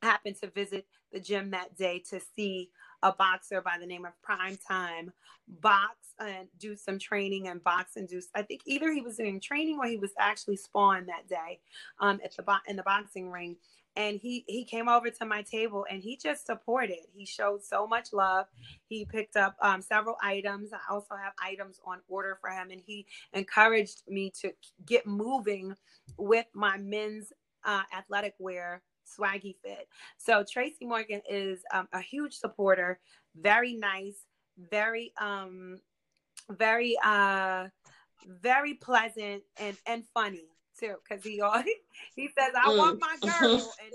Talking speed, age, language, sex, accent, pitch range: 165 wpm, 30-49, English, female, American, 190-225 Hz